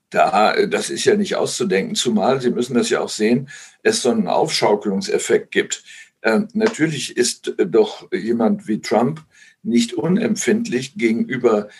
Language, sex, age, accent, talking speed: German, male, 60-79, German, 140 wpm